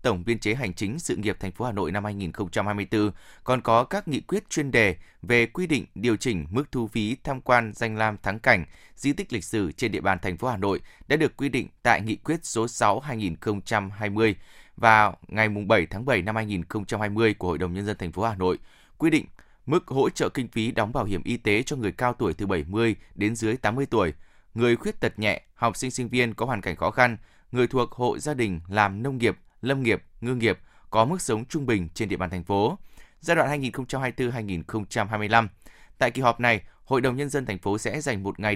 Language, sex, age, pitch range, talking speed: Vietnamese, male, 20-39, 100-125 Hz, 220 wpm